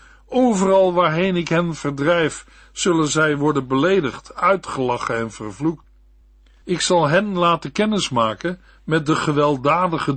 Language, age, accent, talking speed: Dutch, 60-79, Dutch, 120 wpm